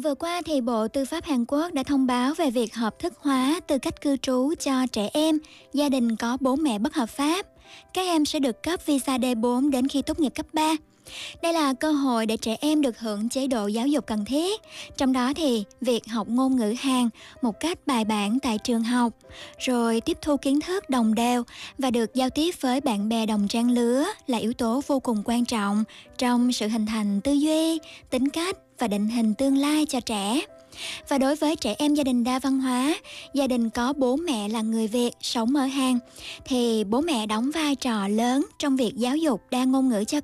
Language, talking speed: Vietnamese, 220 wpm